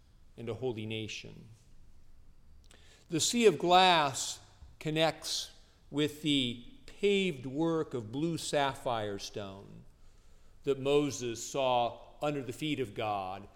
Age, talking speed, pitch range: 50-69, 110 wpm, 110-145 Hz